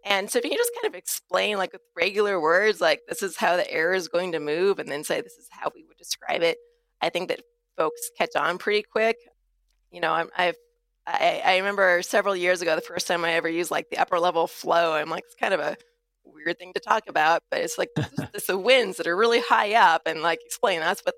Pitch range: 160-240 Hz